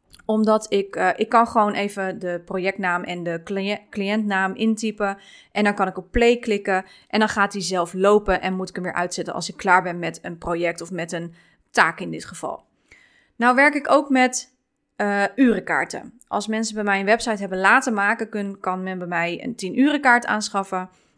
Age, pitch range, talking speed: 20-39, 190-245 Hz, 200 wpm